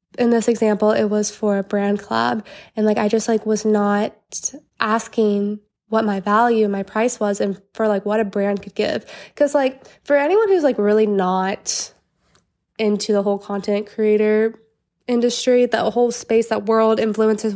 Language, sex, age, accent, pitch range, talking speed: English, female, 20-39, American, 210-245 Hz, 175 wpm